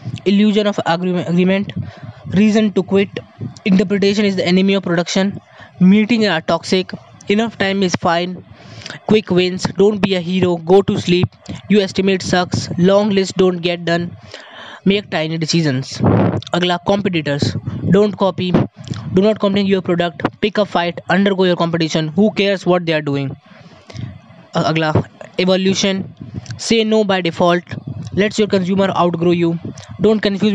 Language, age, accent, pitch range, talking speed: Hindi, 20-39, native, 160-195 Hz, 145 wpm